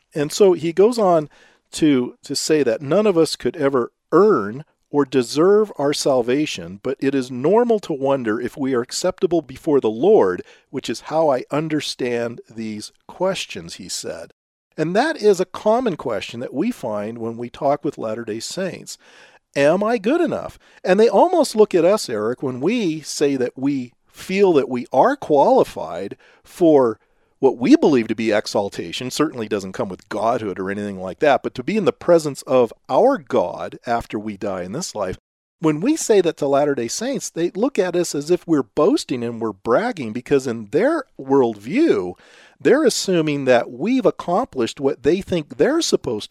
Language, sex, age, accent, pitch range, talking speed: English, male, 40-59, American, 125-200 Hz, 180 wpm